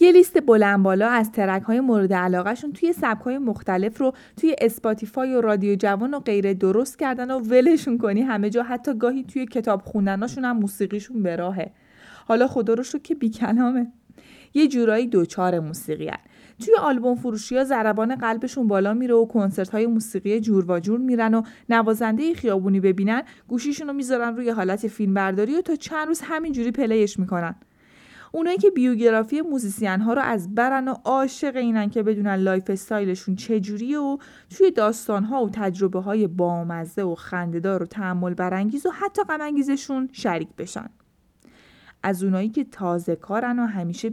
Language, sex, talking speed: Persian, female, 160 wpm